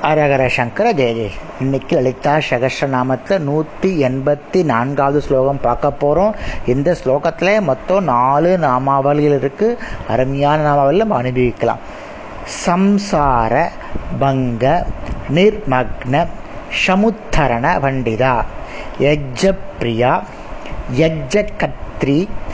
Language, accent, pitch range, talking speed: Tamil, native, 130-185 Hz, 70 wpm